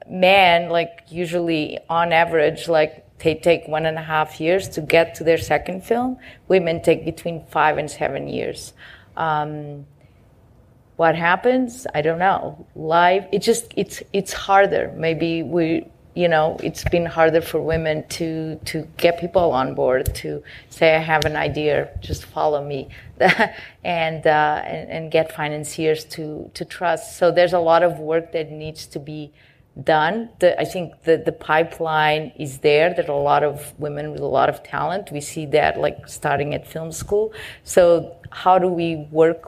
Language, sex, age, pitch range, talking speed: English, female, 30-49, 150-170 Hz, 170 wpm